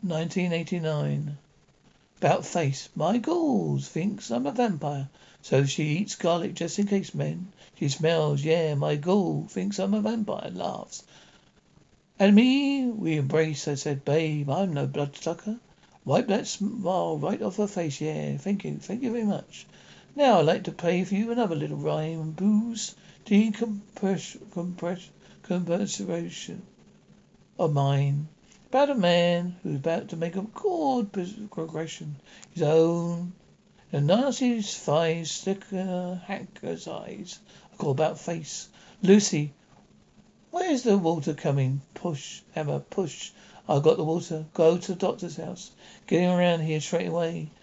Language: English